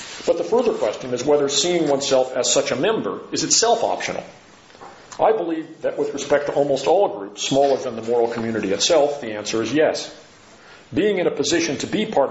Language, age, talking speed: English, 40-59, 200 wpm